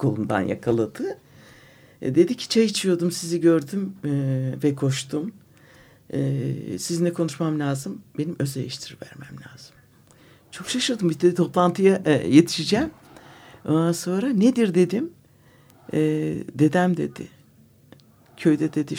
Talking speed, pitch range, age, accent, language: 115 wpm, 135-175 Hz, 60-79, native, Turkish